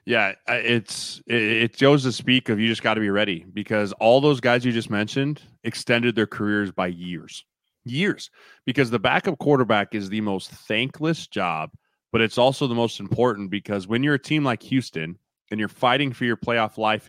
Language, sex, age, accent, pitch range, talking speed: English, male, 30-49, American, 105-140 Hz, 195 wpm